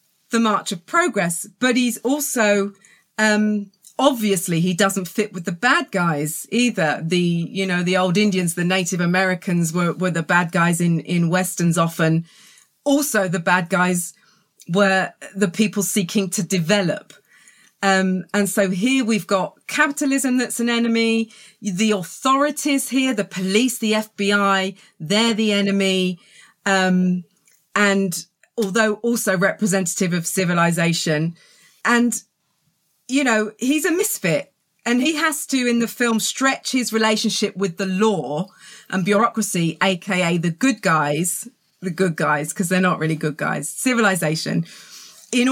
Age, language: 40-59, English